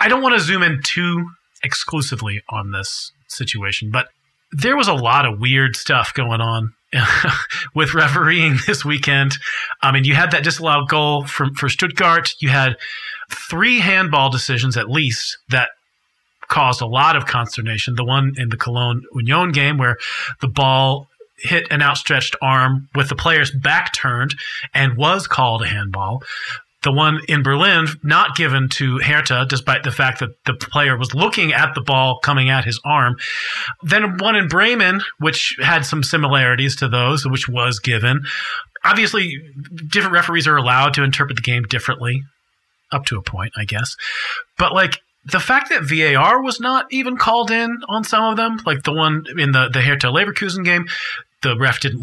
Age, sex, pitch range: 40-59, male, 130-170 Hz